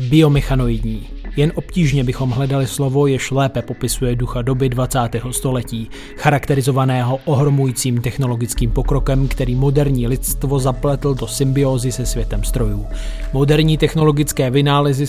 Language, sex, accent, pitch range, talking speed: Czech, male, native, 125-150 Hz, 115 wpm